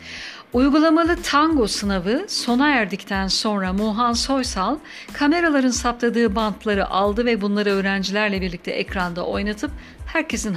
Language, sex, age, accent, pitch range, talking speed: Turkish, female, 60-79, native, 200-265 Hz, 110 wpm